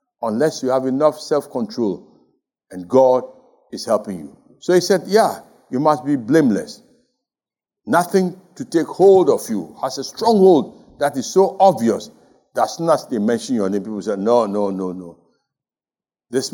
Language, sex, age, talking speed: English, male, 60-79, 165 wpm